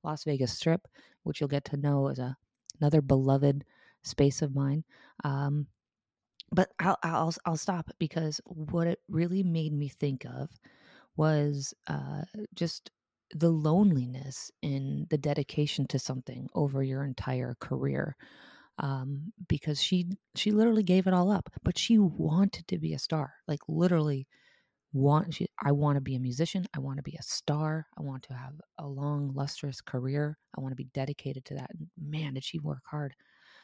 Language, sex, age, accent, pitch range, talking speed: English, female, 30-49, American, 140-170 Hz, 170 wpm